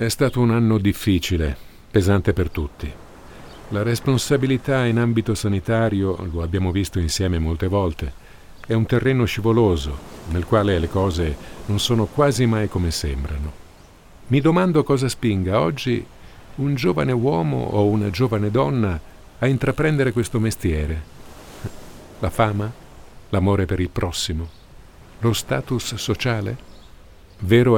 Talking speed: 125 wpm